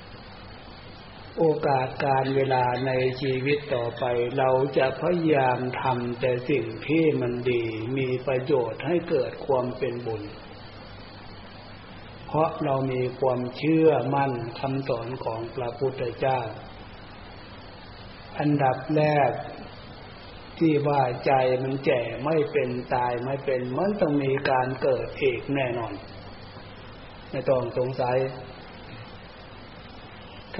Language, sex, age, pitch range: Thai, male, 60-79, 105-140 Hz